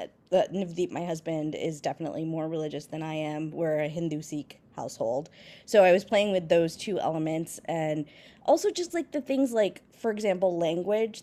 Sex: female